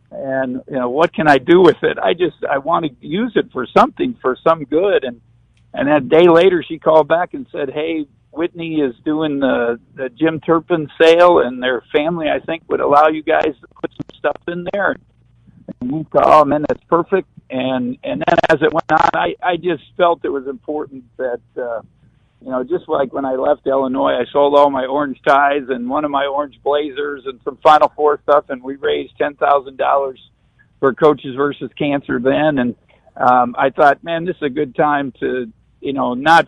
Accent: American